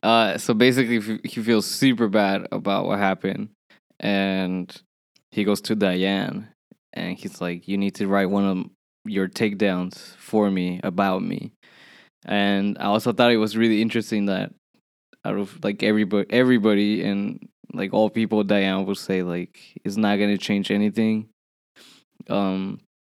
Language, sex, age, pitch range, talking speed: English, male, 10-29, 95-115 Hz, 155 wpm